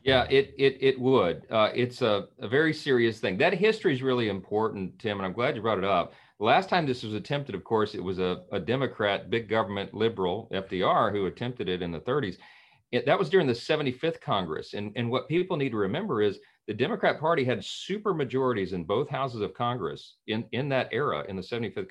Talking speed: 220 wpm